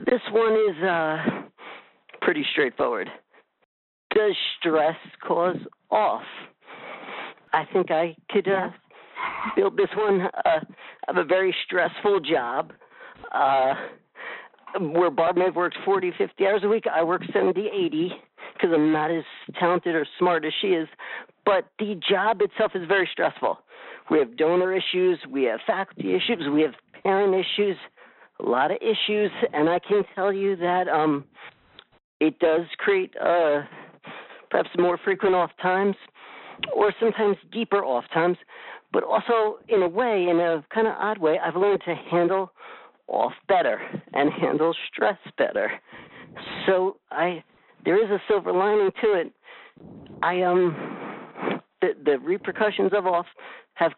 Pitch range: 175-225 Hz